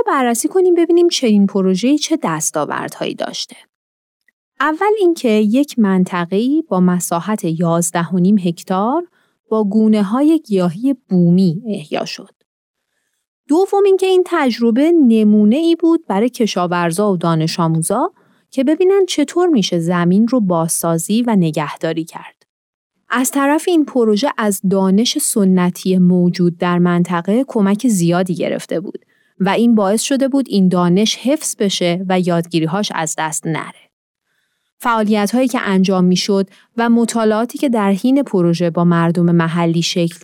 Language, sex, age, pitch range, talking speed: Persian, female, 30-49, 180-275 Hz, 130 wpm